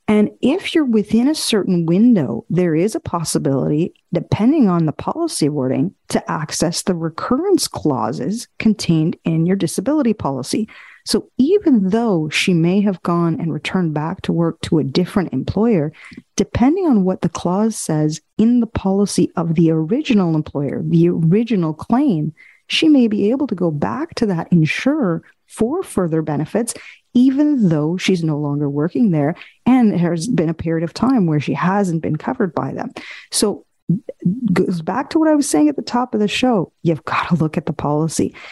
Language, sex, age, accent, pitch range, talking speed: English, female, 40-59, American, 160-230 Hz, 175 wpm